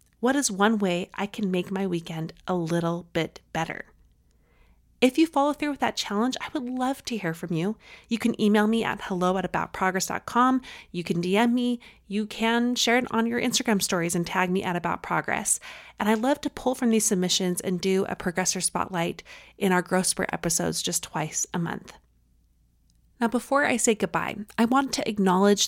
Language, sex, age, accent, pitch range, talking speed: English, female, 30-49, American, 180-225 Hz, 195 wpm